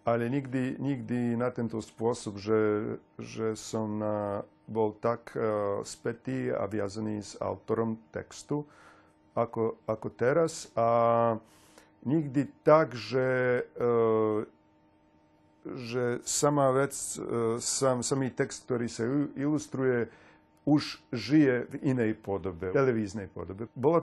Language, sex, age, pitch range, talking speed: Slovak, male, 40-59, 110-135 Hz, 110 wpm